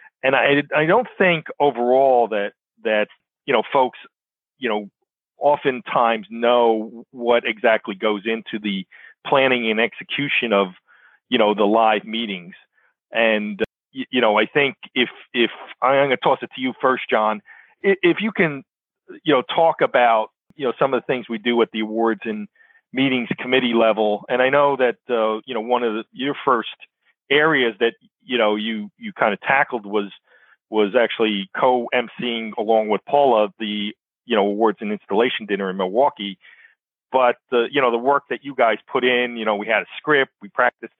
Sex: male